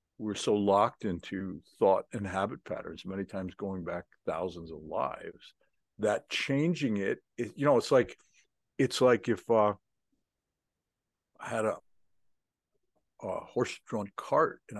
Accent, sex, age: American, male, 60-79